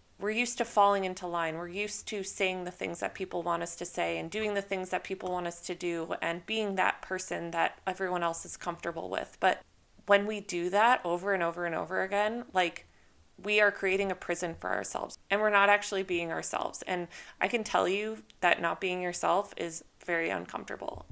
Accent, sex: American, female